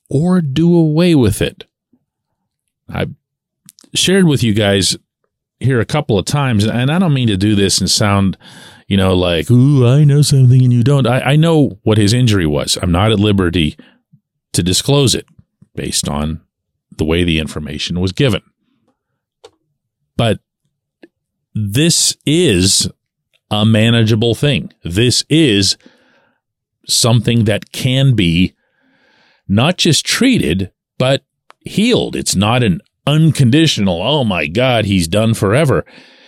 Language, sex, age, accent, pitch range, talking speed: English, male, 40-59, American, 105-150 Hz, 135 wpm